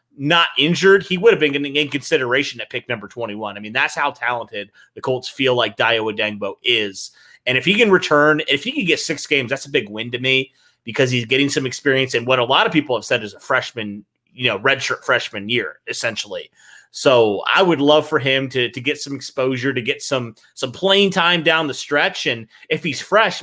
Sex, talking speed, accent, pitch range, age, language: male, 225 wpm, American, 125-160 Hz, 30-49, English